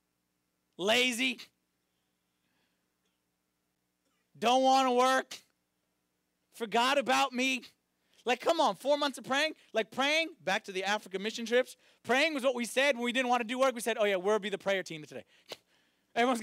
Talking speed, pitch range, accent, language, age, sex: 170 wpm, 185-290 Hz, American, English, 30-49, male